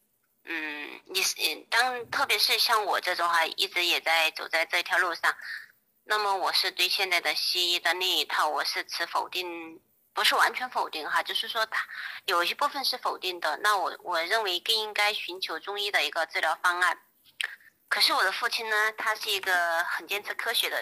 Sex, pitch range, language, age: female, 170-240 Hz, Chinese, 20-39